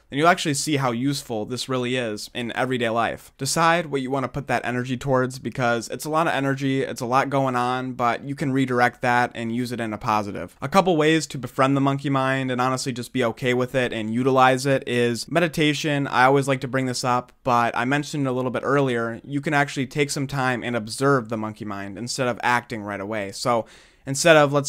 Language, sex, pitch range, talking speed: English, male, 120-140 Hz, 240 wpm